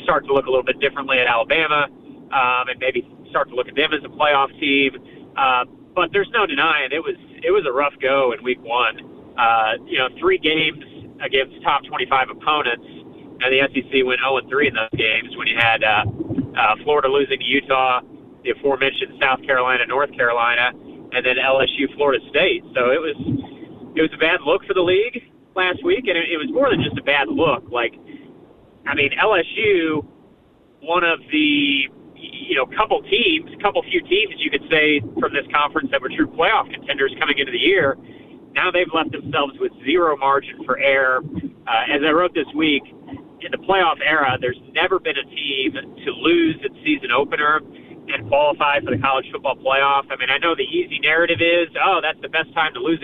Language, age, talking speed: English, 30-49, 200 wpm